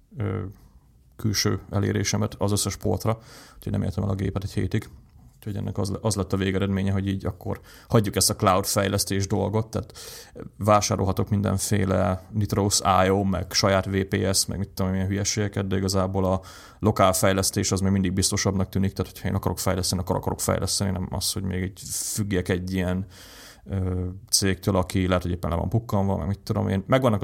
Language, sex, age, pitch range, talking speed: Hungarian, male, 30-49, 95-105 Hz, 175 wpm